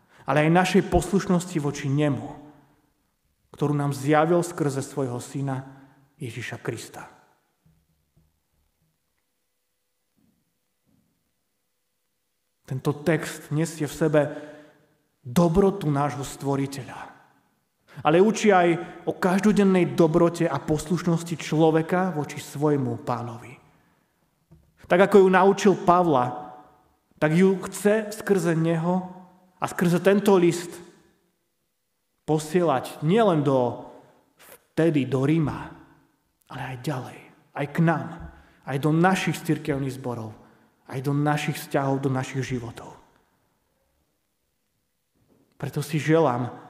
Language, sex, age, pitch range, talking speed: Slovak, male, 30-49, 135-170 Hz, 95 wpm